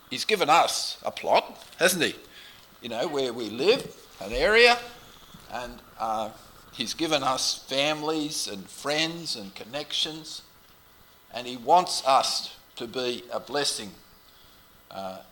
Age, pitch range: 50-69, 115-165 Hz